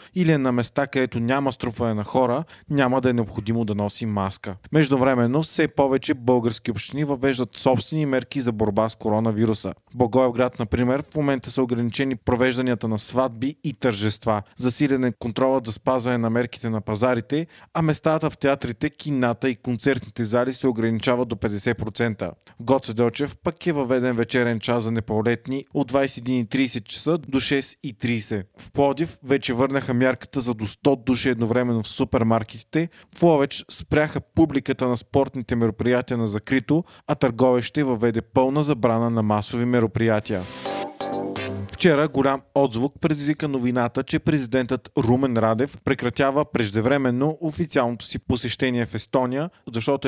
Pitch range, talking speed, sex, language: 115-140 Hz, 145 wpm, male, Bulgarian